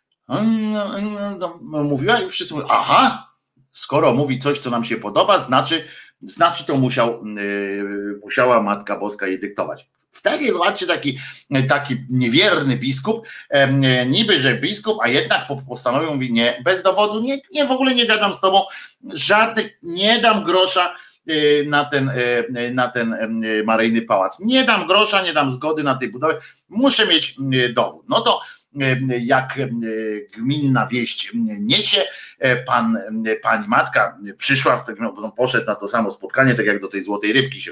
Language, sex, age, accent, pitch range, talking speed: Polish, male, 50-69, native, 120-185 Hz, 140 wpm